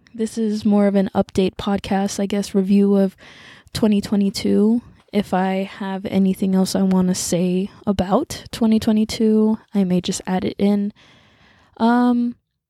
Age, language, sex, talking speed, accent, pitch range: 20-39, English, female, 140 wpm, American, 185-205 Hz